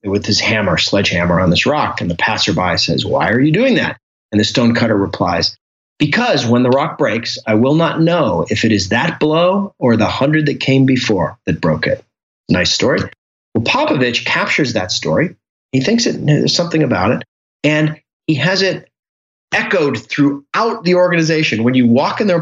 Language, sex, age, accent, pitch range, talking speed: English, male, 30-49, American, 110-150 Hz, 185 wpm